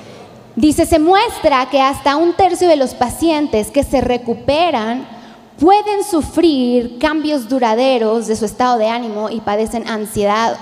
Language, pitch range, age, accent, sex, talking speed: Spanish, 225-285 Hz, 20-39, Mexican, female, 140 wpm